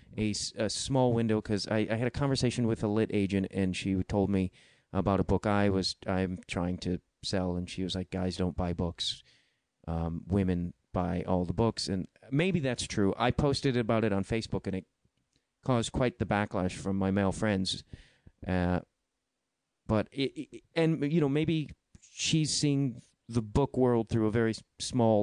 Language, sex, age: English, male, 30-49